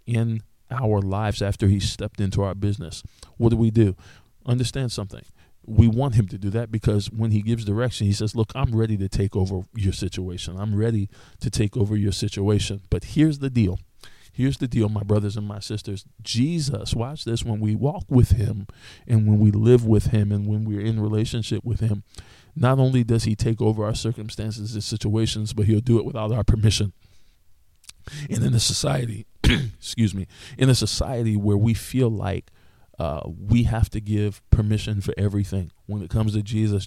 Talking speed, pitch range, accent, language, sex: 195 wpm, 100-115 Hz, American, English, male